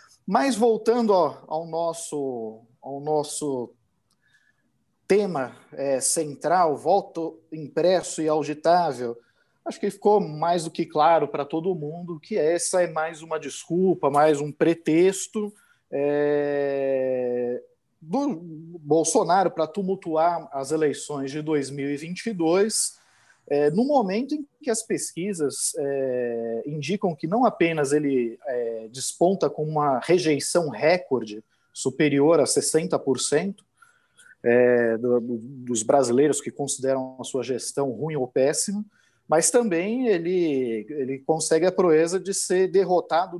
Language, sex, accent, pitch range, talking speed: Portuguese, male, Brazilian, 140-185 Hz, 120 wpm